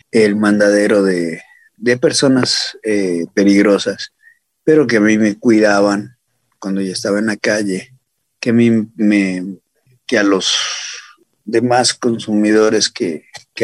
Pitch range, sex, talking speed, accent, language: 100-120 Hz, male, 120 wpm, Mexican, Spanish